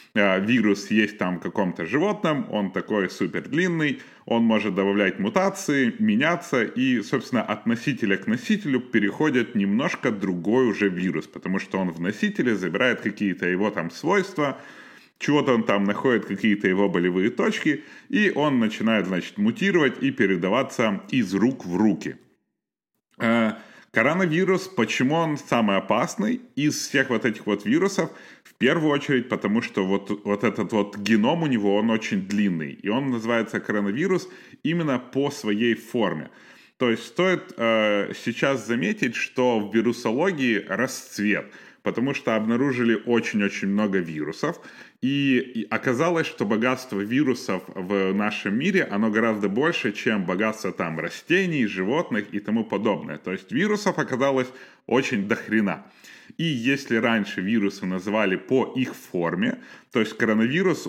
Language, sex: Ukrainian, male